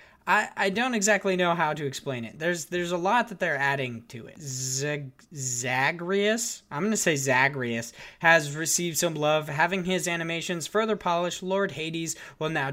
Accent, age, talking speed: American, 20-39, 175 wpm